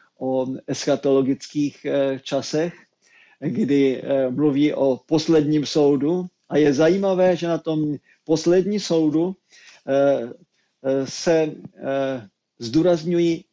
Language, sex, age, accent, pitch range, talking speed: Czech, male, 50-69, native, 135-160 Hz, 80 wpm